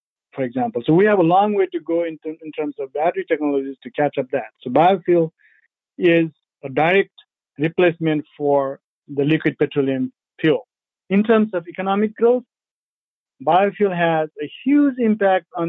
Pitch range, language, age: 155-190 Hz, English, 50-69